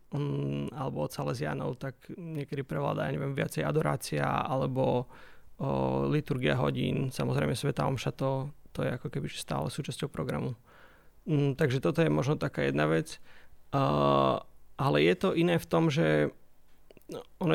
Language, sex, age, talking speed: Slovak, male, 30-49, 135 wpm